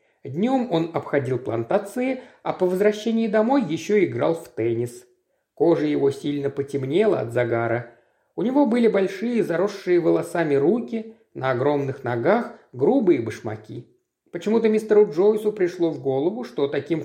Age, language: 50-69, Russian